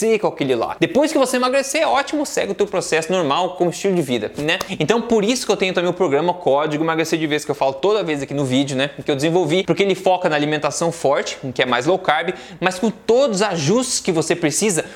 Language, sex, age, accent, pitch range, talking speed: Portuguese, male, 20-39, Brazilian, 155-215 Hz, 250 wpm